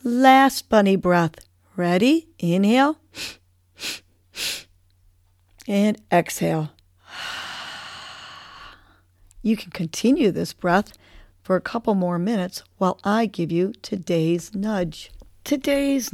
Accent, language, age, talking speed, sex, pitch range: American, English, 50-69, 90 wpm, female, 165-215 Hz